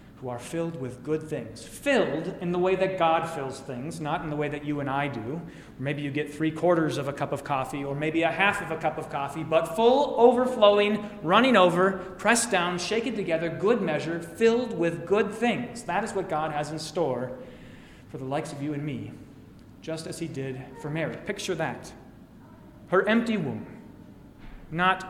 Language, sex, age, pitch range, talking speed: English, male, 30-49, 140-185 Hz, 200 wpm